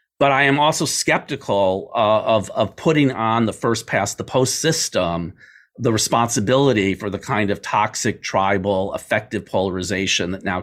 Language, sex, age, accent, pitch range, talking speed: English, male, 40-59, American, 100-130 Hz, 160 wpm